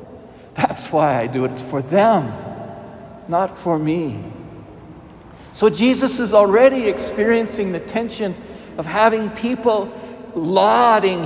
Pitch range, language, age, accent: 175-225 Hz, English, 60-79, American